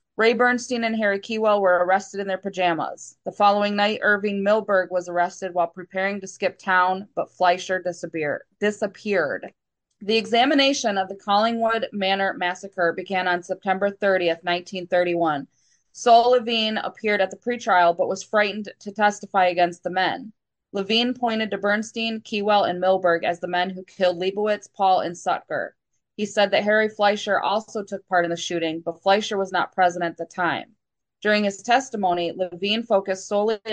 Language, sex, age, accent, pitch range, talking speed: English, female, 20-39, American, 180-210 Hz, 165 wpm